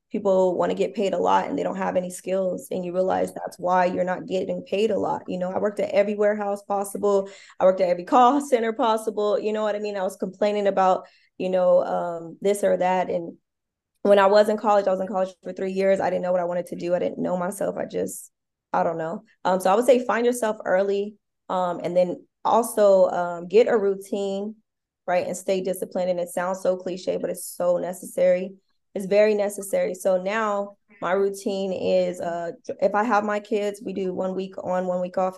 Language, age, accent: English, 20-39, American